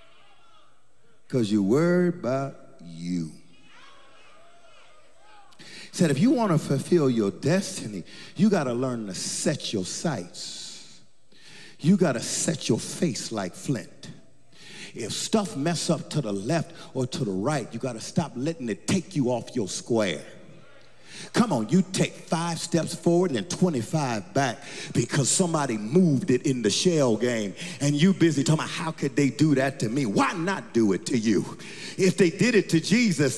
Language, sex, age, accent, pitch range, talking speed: English, male, 50-69, American, 145-210 Hz, 170 wpm